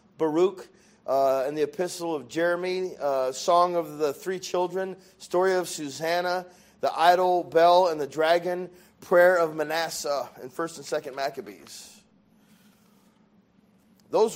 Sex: male